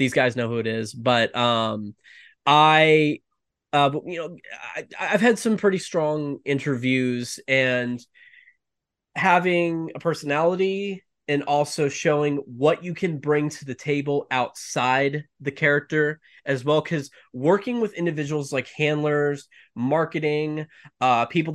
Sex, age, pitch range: male, 20-39, 130-160 Hz